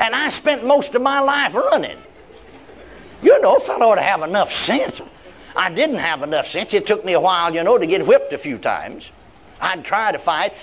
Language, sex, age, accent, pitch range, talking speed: English, male, 60-79, American, 170-255 Hz, 220 wpm